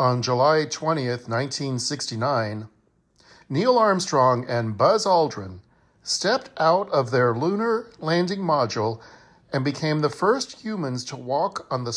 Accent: American